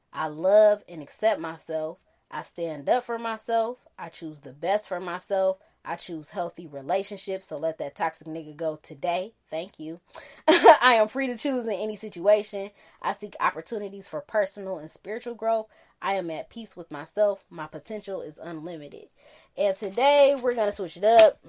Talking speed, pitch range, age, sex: 175 wpm, 170-220 Hz, 20-39, female